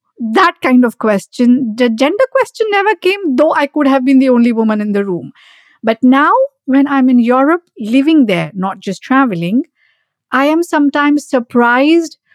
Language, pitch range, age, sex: English, 210-275 Hz, 50-69, female